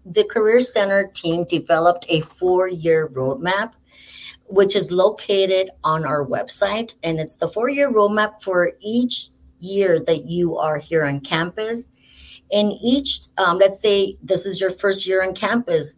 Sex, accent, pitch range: female, American, 170-205 Hz